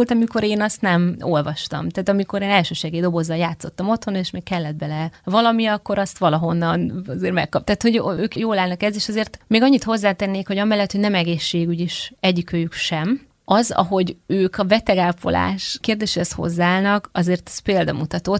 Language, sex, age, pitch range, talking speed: Hungarian, female, 30-49, 170-200 Hz, 165 wpm